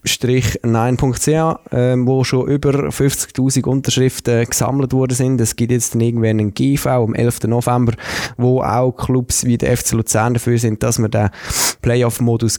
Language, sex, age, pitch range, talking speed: German, male, 20-39, 110-130 Hz, 150 wpm